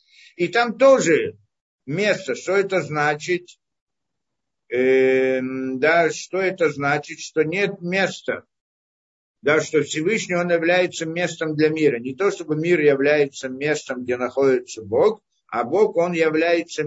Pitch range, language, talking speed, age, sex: 155-205 Hz, Russian, 130 wpm, 50-69, male